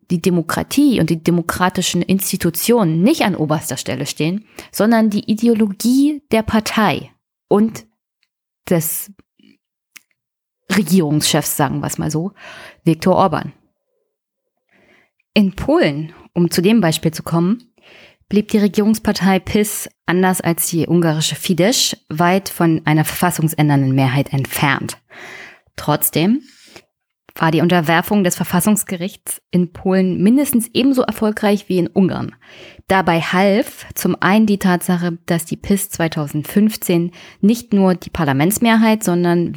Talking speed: 120 wpm